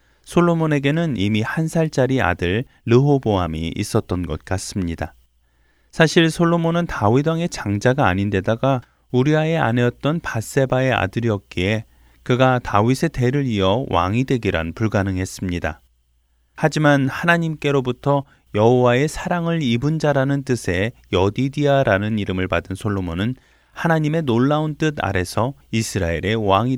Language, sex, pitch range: Korean, male, 95-140 Hz